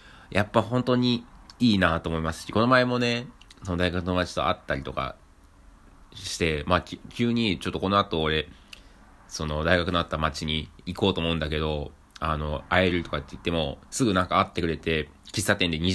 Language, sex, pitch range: Japanese, male, 75-105 Hz